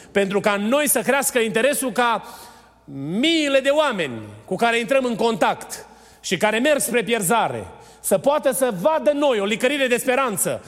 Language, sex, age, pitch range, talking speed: Romanian, male, 30-49, 190-260 Hz, 165 wpm